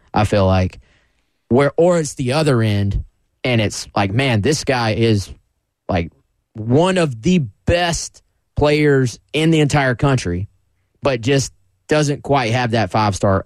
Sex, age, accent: male, 20-39, American